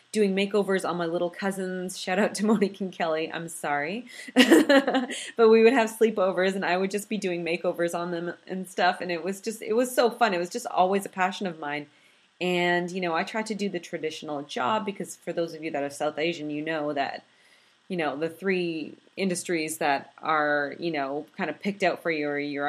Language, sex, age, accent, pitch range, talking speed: English, female, 30-49, American, 160-200 Hz, 225 wpm